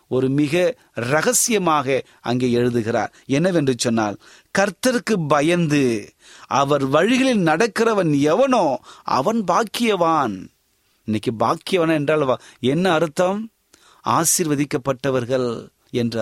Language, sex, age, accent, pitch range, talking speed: Tamil, male, 30-49, native, 145-210 Hz, 80 wpm